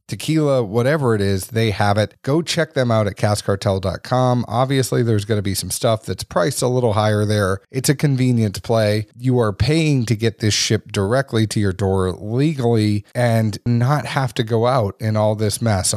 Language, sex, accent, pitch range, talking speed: English, male, American, 105-125 Hz, 195 wpm